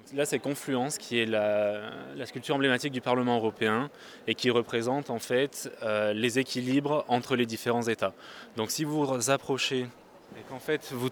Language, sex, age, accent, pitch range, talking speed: French, male, 20-39, French, 110-130 Hz, 180 wpm